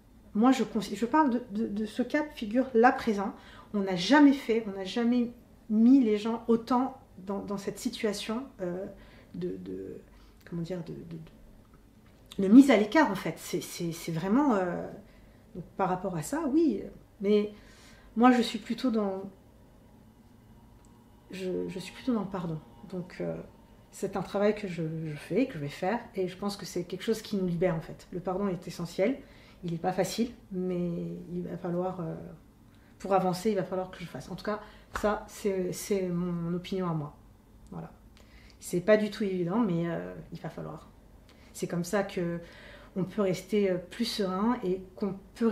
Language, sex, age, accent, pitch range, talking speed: French, female, 40-59, French, 170-215 Hz, 180 wpm